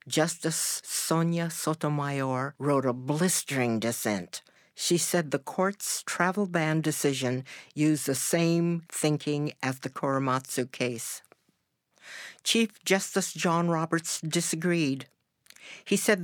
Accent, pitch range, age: American, 140-175 Hz, 60-79